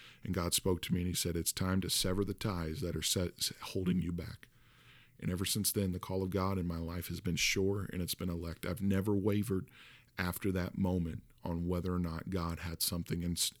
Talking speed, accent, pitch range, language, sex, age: 225 wpm, American, 90-105 Hz, English, male, 40-59